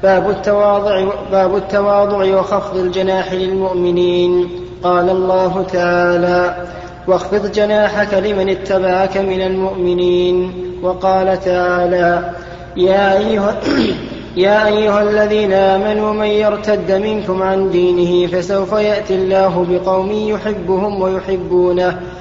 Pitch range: 180-200 Hz